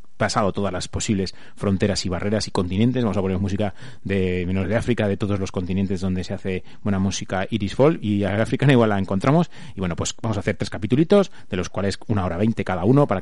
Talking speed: 225 wpm